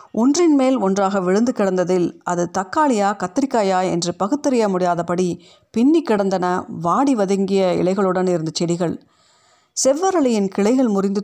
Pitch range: 180-245 Hz